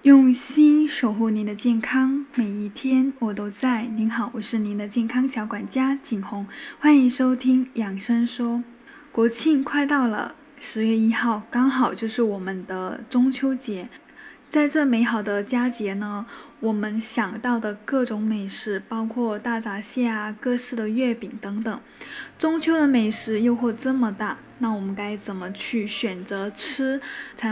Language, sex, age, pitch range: Chinese, female, 10-29, 225-270 Hz